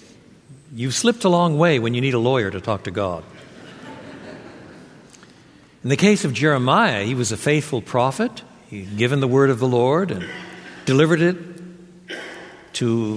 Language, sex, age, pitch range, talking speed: English, male, 60-79, 115-165 Hz, 165 wpm